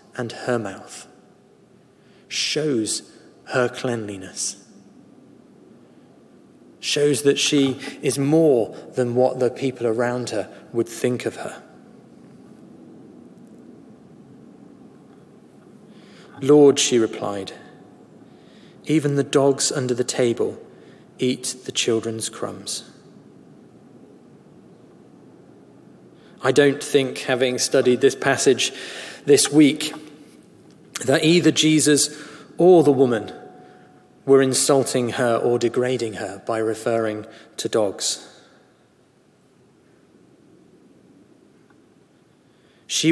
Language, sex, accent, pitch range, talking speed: English, male, British, 120-145 Hz, 85 wpm